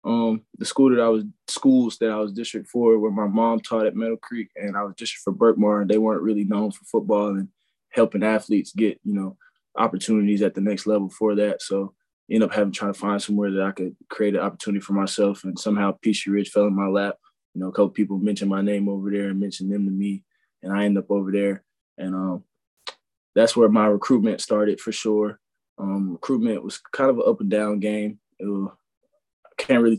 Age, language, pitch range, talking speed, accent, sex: 20-39, English, 100-110 Hz, 225 wpm, American, male